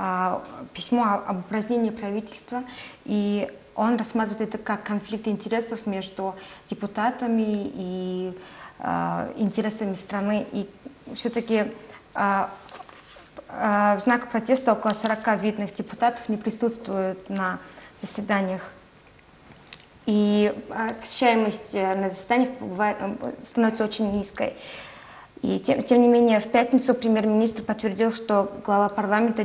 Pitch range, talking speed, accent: 200-230 Hz, 100 wpm, native